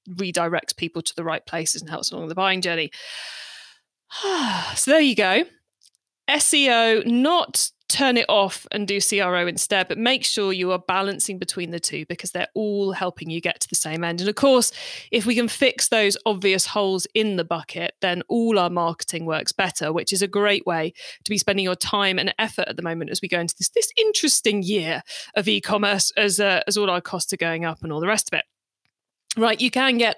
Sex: female